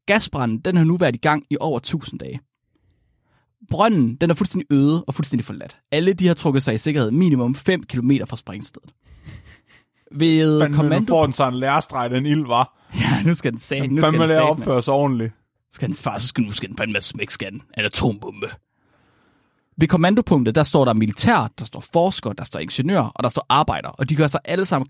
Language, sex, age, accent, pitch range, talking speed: Danish, male, 30-49, native, 120-155 Hz, 150 wpm